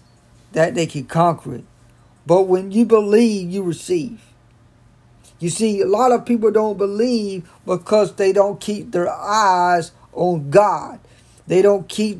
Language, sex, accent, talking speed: English, male, American, 150 wpm